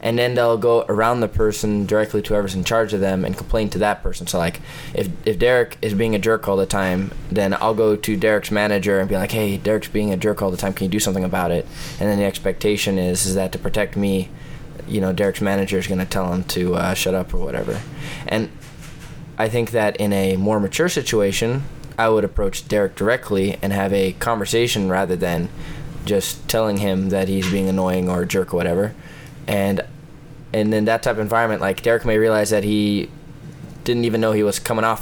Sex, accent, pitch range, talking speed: male, American, 100-115 Hz, 225 wpm